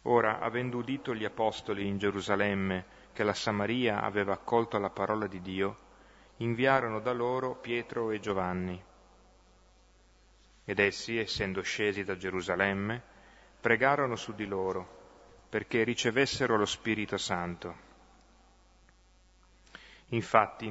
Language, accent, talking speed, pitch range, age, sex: Italian, native, 110 wpm, 100-115 Hz, 30-49, male